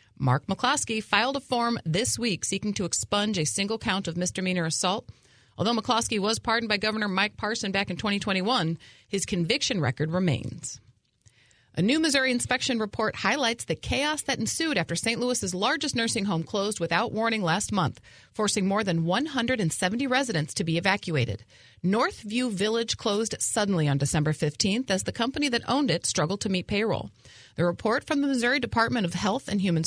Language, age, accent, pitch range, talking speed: English, 40-59, American, 155-220 Hz, 175 wpm